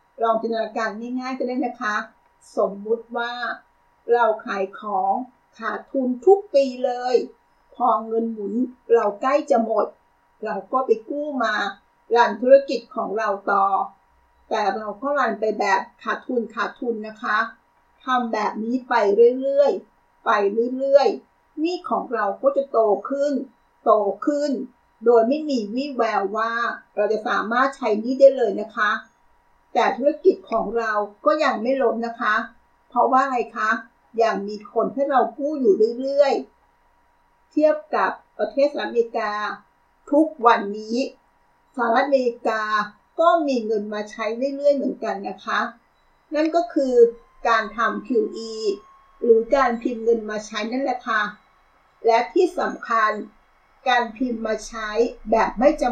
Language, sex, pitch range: Thai, female, 220-270 Hz